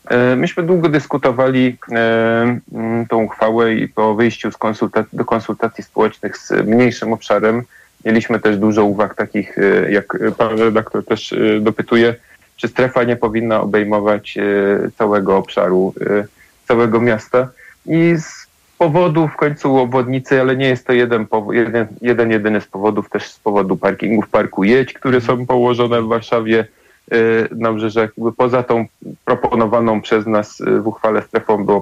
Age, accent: 30-49, native